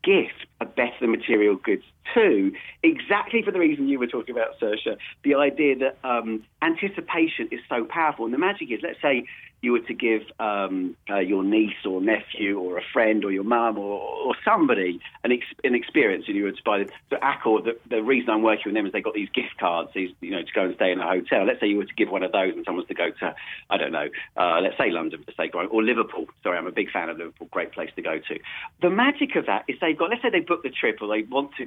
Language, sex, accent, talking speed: English, male, British, 260 wpm